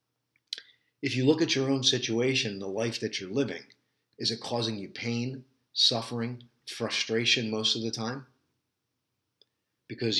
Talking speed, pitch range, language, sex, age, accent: 140 wpm, 110-130 Hz, English, male, 50-69, American